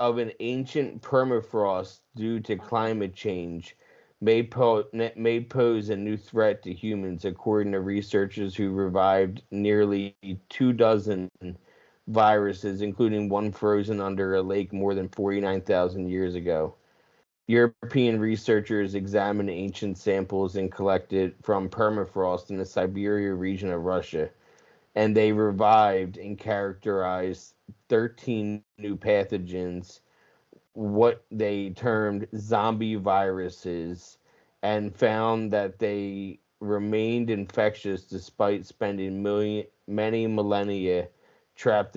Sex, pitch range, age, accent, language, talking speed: male, 95-110 Hz, 30-49, American, English, 105 wpm